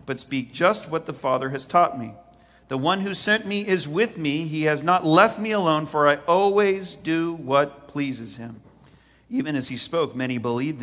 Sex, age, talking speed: male, 40-59, 200 wpm